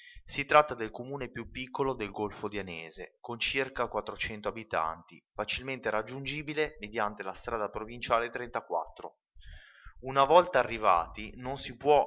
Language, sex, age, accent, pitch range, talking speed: Italian, male, 20-39, native, 100-130 Hz, 135 wpm